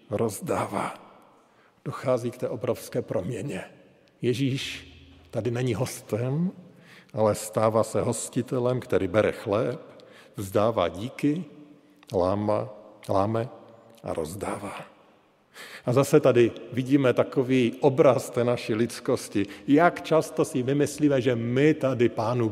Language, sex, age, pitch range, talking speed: Slovak, male, 50-69, 110-150 Hz, 105 wpm